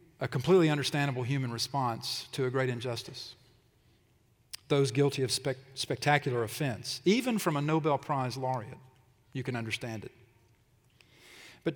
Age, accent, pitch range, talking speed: 40-59, American, 120-145 Hz, 135 wpm